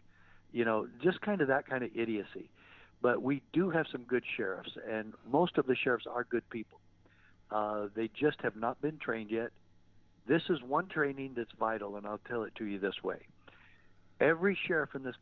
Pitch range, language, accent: 95-130 Hz, English, American